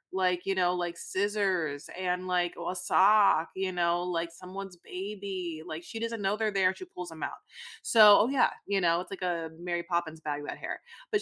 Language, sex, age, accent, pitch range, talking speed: English, female, 20-39, American, 190-230 Hz, 205 wpm